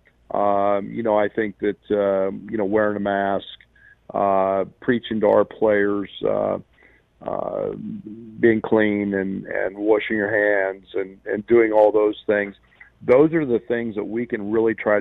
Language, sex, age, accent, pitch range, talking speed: English, male, 50-69, American, 100-120 Hz, 165 wpm